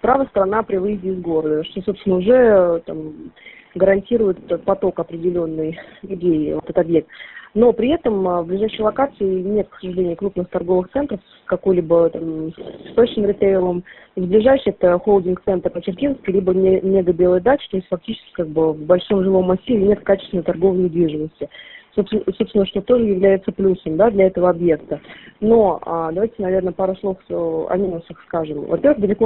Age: 20-39